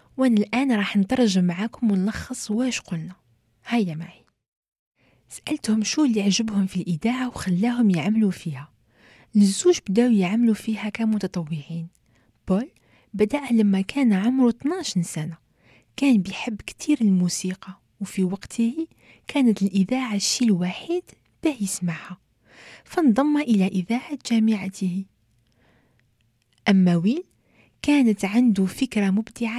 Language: French